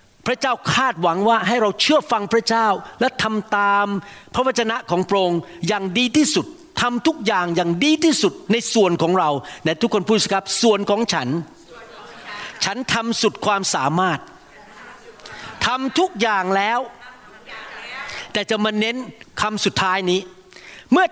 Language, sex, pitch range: Thai, male, 185-245 Hz